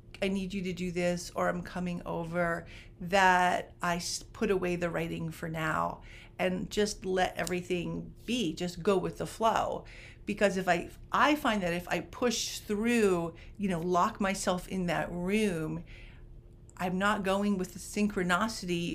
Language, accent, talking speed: English, American, 160 wpm